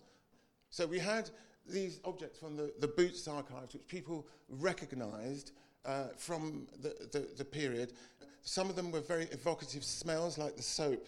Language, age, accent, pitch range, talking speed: English, 50-69, British, 130-155 Hz, 155 wpm